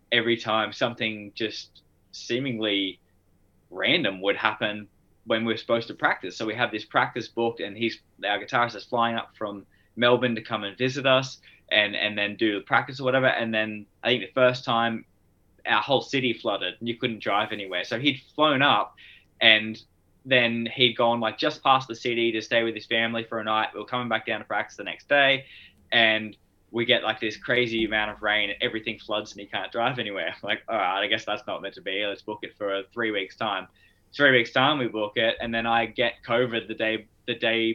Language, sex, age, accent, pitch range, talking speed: English, male, 20-39, Australian, 100-120 Hz, 220 wpm